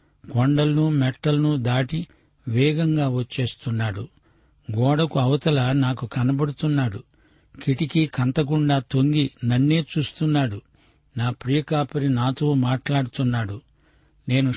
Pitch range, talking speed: 125-145 Hz, 80 wpm